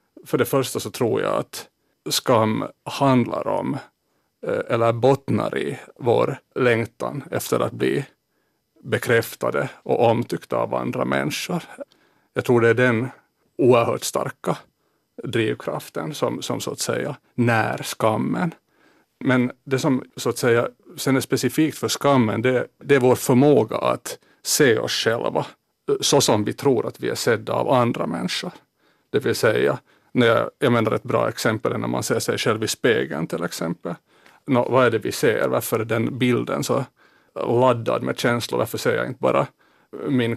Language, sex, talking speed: Finnish, male, 160 wpm